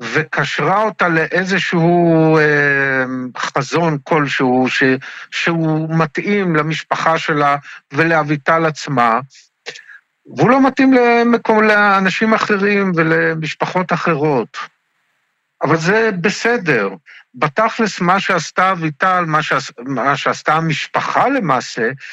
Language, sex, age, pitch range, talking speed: Hebrew, male, 50-69, 145-195 Hz, 90 wpm